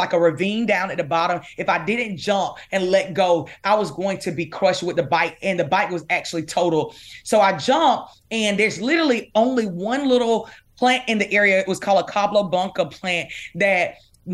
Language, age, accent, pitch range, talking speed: English, 30-49, American, 170-210 Hz, 210 wpm